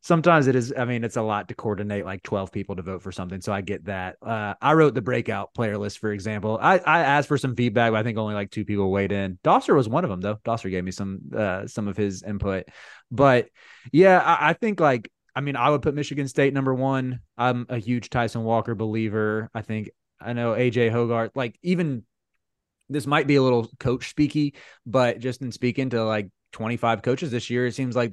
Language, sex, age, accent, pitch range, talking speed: English, male, 20-39, American, 105-140 Hz, 235 wpm